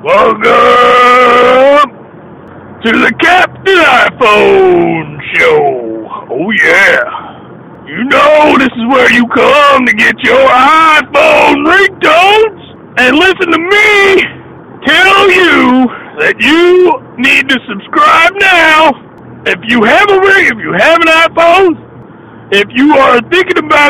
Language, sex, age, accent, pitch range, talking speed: English, male, 40-59, American, 240-335 Hz, 120 wpm